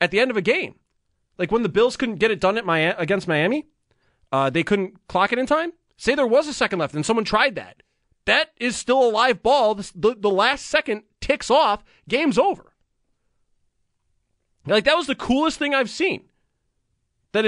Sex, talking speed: male, 190 wpm